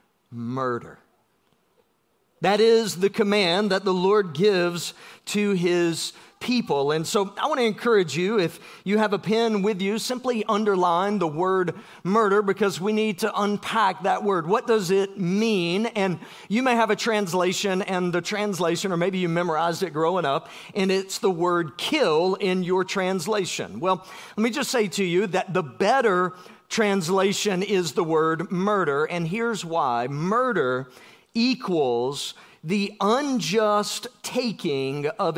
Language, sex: English, male